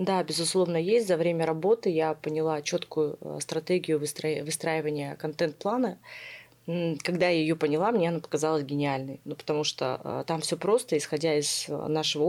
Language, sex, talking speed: Russian, female, 140 wpm